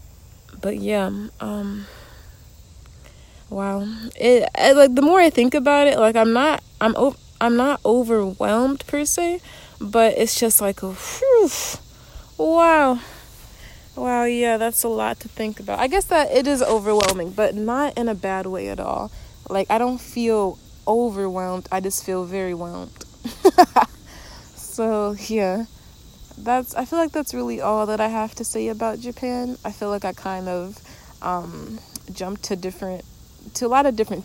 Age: 30-49